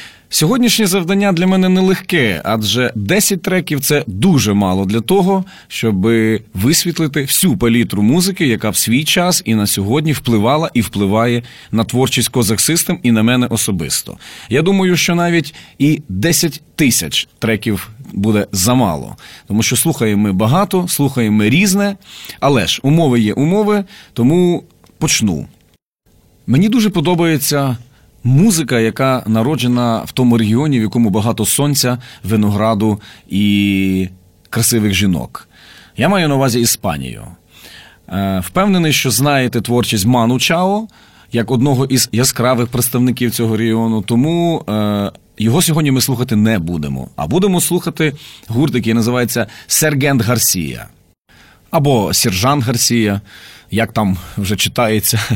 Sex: male